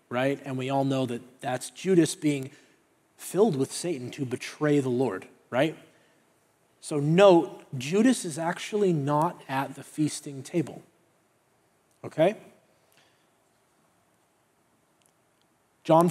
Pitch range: 145-180 Hz